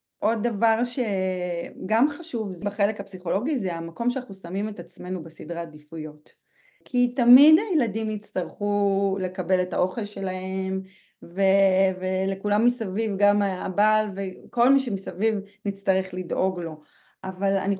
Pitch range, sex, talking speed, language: 190-240 Hz, female, 120 wpm, Hebrew